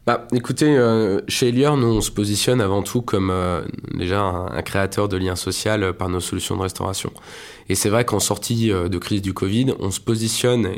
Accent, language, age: French, French, 20-39